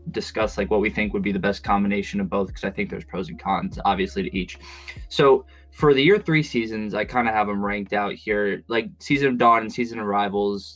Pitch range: 100-130 Hz